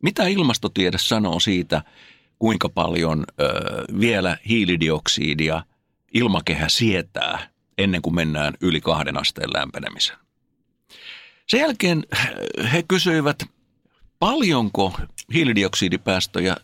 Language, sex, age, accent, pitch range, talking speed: Finnish, male, 60-79, native, 85-130 Hz, 85 wpm